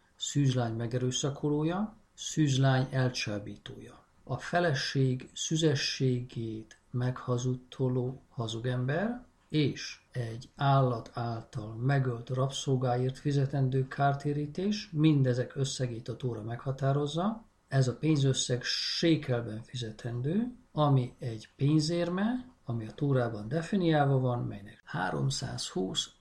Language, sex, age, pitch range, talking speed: Hungarian, male, 50-69, 120-150 Hz, 85 wpm